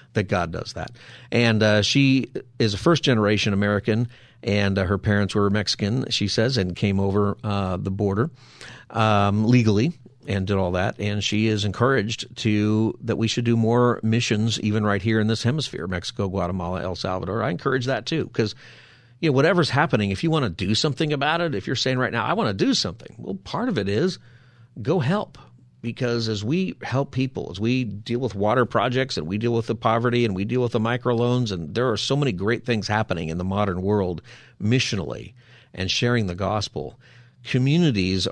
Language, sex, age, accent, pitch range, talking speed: English, male, 50-69, American, 105-125 Hz, 200 wpm